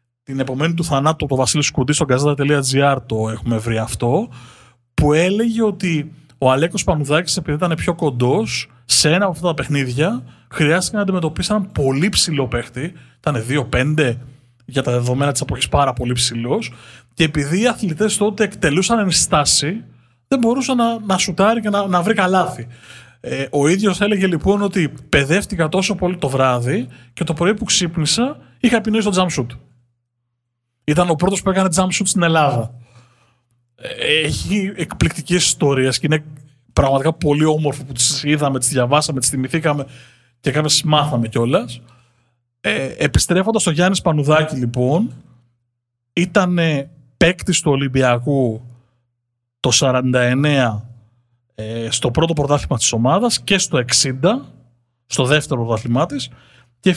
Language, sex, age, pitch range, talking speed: Greek, male, 20-39, 125-180 Hz, 140 wpm